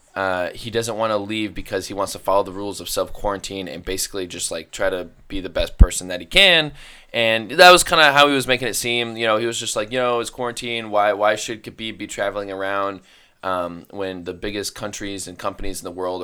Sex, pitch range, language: male, 95-125 Hz, English